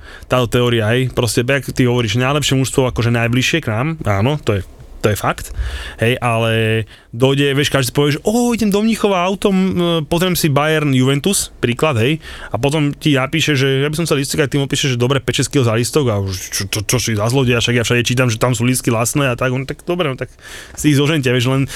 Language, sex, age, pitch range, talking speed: Slovak, male, 20-39, 120-145 Hz, 235 wpm